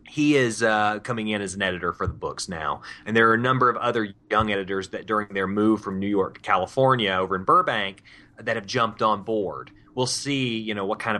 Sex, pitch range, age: male, 100-125 Hz, 30-49